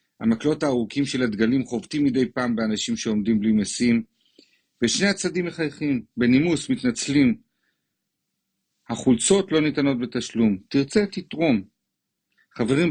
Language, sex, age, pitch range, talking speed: Hebrew, male, 50-69, 115-155 Hz, 105 wpm